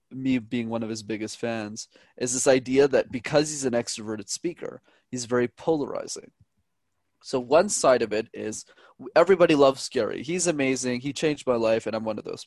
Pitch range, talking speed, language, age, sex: 120-150 Hz, 190 wpm, English, 20-39, male